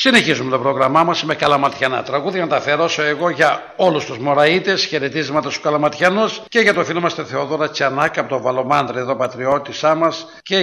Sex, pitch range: male, 135-175 Hz